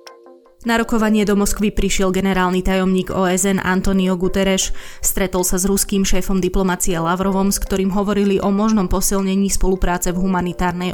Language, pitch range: Slovak, 185-200 Hz